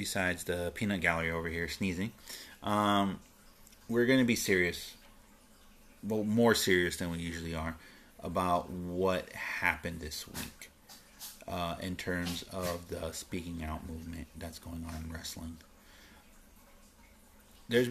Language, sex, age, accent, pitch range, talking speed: English, male, 30-49, American, 85-100 Hz, 130 wpm